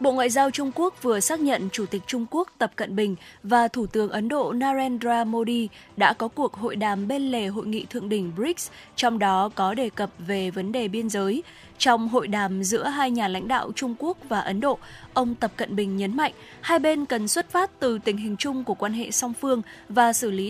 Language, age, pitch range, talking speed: Vietnamese, 20-39, 210-270 Hz, 235 wpm